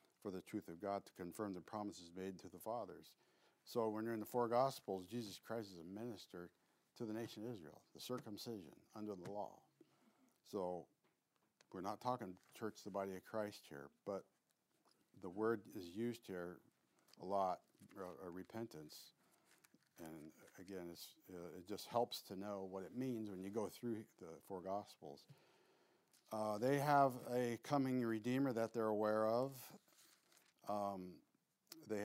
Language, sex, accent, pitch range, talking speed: English, male, American, 95-115 Hz, 160 wpm